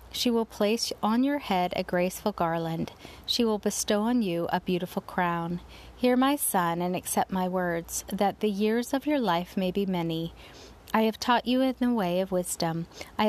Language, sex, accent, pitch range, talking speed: English, female, American, 175-225 Hz, 195 wpm